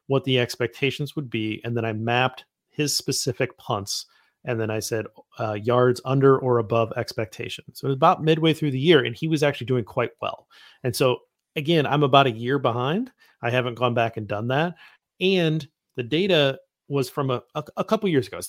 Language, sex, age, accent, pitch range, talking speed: English, male, 30-49, American, 120-150 Hz, 210 wpm